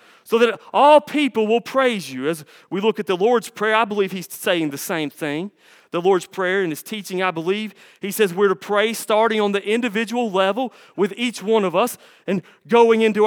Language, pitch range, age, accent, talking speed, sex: English, 195-260 Hz, 30-49, American, 215 wpm, male